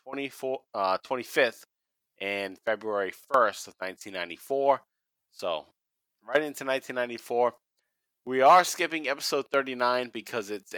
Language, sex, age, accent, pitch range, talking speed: English, male, 30-49, American, 95-130 Hz, 105 wpm